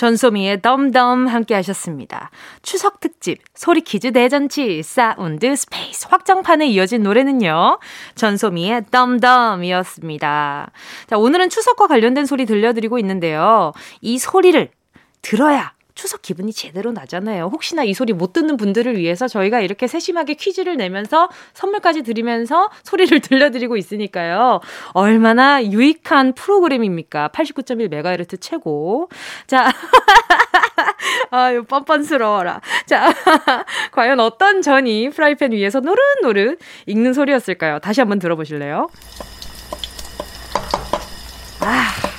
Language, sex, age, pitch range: Korean, female, 20-39, 200-285 Hz